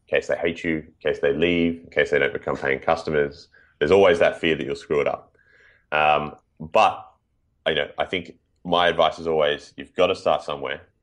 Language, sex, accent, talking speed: English, male, Australian, 225 wpm